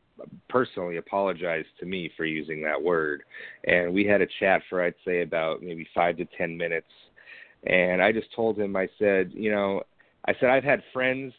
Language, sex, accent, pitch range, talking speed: English, male, American, 95-110 Hz, 190 wpm